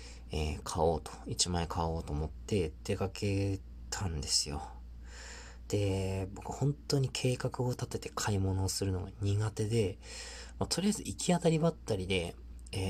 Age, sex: 20-39, male